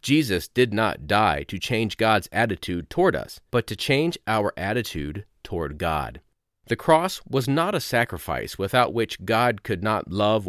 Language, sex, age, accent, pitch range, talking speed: English, male, 40-59, American, 95-130 Hz, 165 wpm